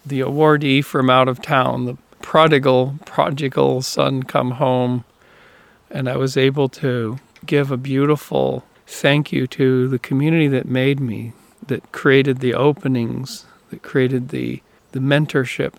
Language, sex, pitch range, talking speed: English, male, 125-140 Hz, 140 wpm